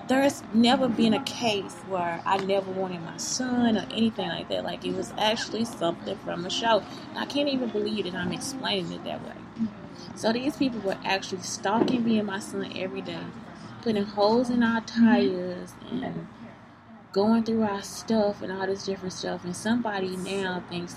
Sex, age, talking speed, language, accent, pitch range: female, 20-39, 185 wpm, English, American, 185-225 Hz